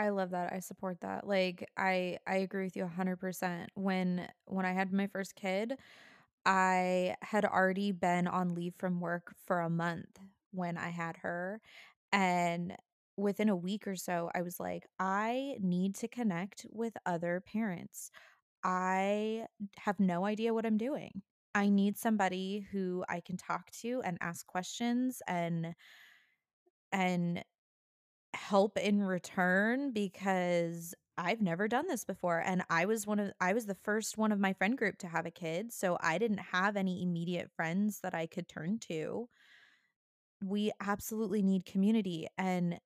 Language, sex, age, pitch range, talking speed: English, female, 20-39, 180-210 Hz, 165 wpm